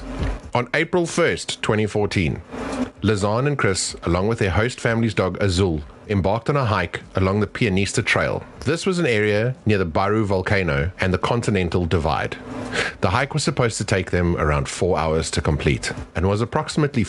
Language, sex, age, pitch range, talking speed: English, male, 30-49, 85-105 Hz, 170 wpm